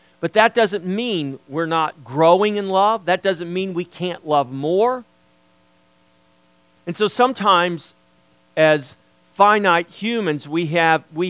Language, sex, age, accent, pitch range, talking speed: English, male, 50-69, American, 140-200 Hz, 135 wpm